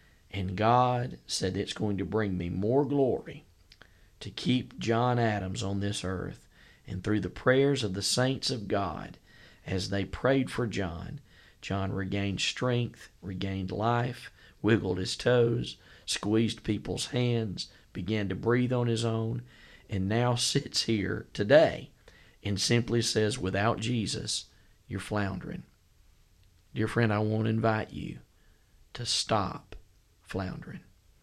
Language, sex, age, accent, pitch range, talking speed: English, male, 40-59, American, 100-120 Hz, 135 wpm